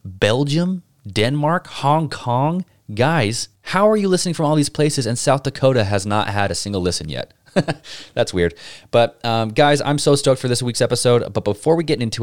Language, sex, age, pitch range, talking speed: English, male, 20-39, 95-135 Hz, 195 wpm